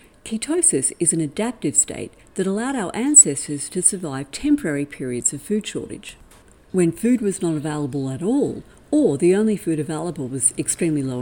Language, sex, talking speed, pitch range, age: English, female, 165 wpm, 145-220 Hz, 50-69